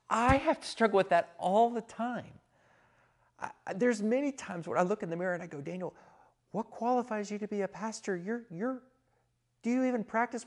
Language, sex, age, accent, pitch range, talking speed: English, male, 40-59, American, 120-180 Hz, 205 wpm